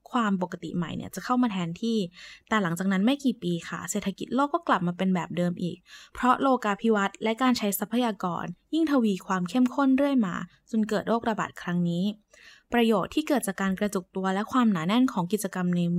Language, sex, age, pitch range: Thai, female, 20-39, 185-240 Hz